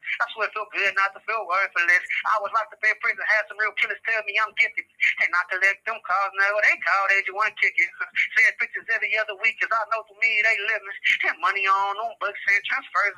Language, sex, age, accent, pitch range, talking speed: English, male, 20-39, American, 195-225 Hz, 240 wpm